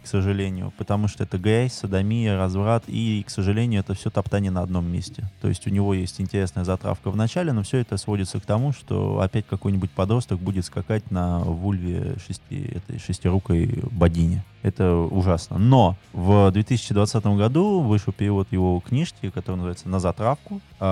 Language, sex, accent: Russian, male, native